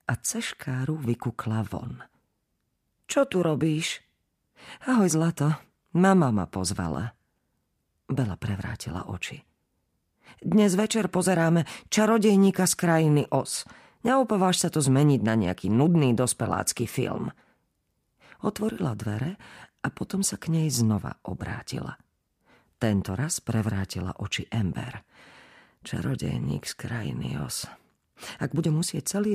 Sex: female